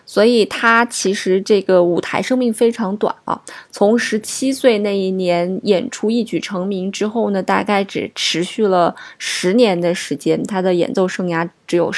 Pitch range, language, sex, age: 180-210 Hz, Chinese, female, 20-39